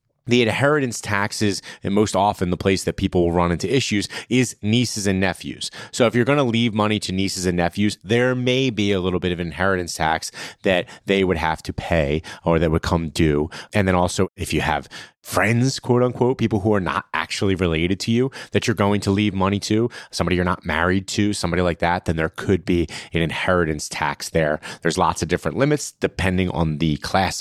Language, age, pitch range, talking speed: English, 30-49, 85-120 Hz, 215 wpm